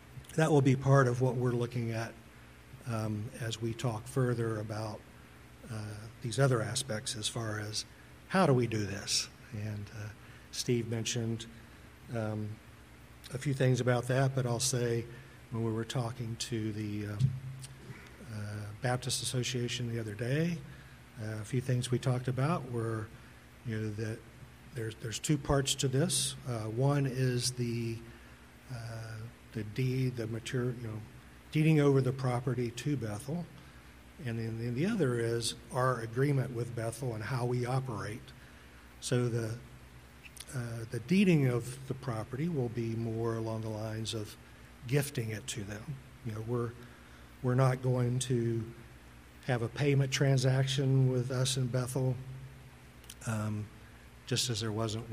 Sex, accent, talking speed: male, American, 150 wpm